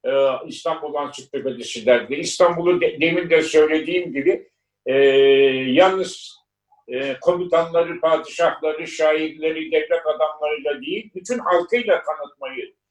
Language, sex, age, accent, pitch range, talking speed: Turkish, male, 60-79, native, 145-195 Hz, 90 wpm